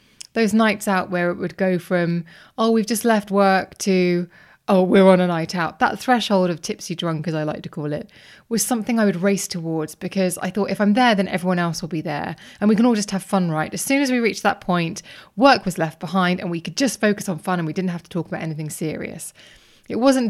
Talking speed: 255 wpm